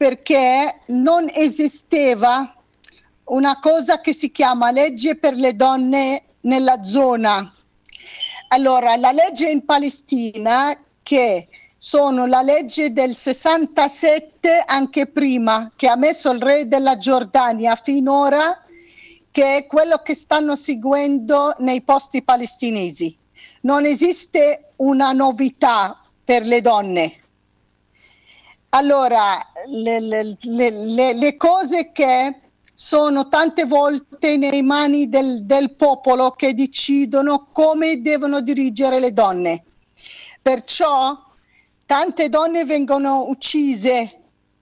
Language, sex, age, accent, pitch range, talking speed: Italian, female, 50-69, native, 255-295 Hz, 100 wpm